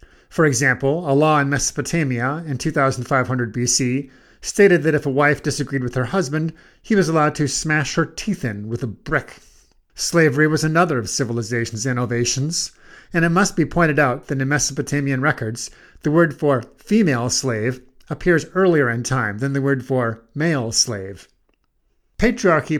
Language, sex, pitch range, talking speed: English, male, 130-160 Hz, 160 wpm